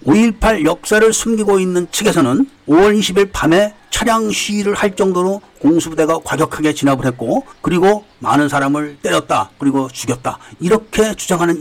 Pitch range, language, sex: 150-205 Hz, Korean, male